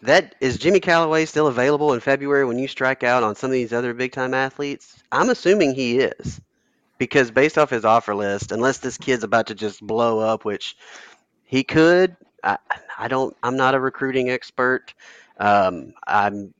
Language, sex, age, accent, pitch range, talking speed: English, male, 30-49, American, 105-130 Hz, 185 wpm